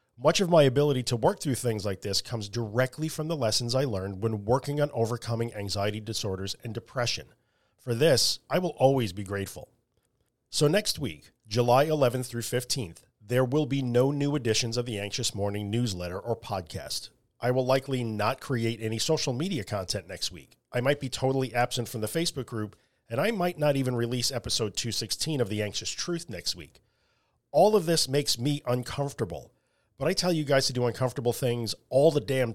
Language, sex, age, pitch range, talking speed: English, male, 40-59, 110-140 Hz, 190 wpm